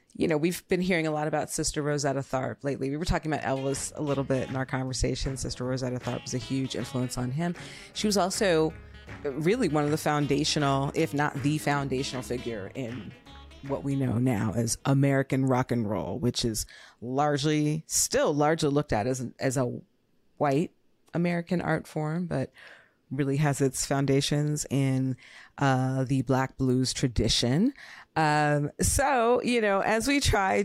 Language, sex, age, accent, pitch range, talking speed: English, female, 30-49, American, 135-165 Hz, 170 wpm